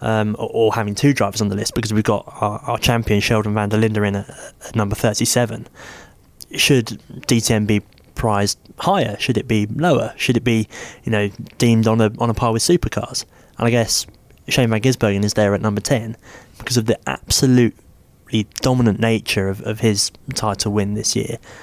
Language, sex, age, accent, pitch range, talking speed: English, male, 20-39, British, 105-120 Hz, 195 wpm